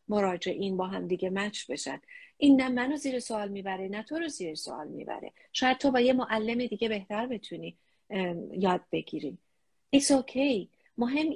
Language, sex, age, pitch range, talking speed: English, female, 40-59, 185-250 Hz, 175 wpm